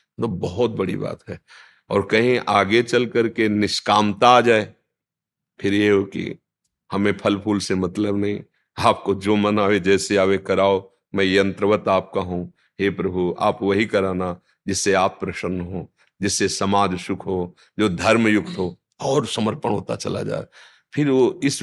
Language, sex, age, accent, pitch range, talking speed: Hindi, male, 50-69, native, 100-125 Hz, 160 wpm